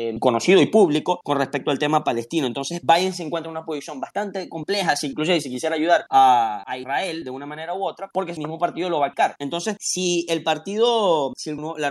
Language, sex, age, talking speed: Spanish, male, 20-39, 220 wpm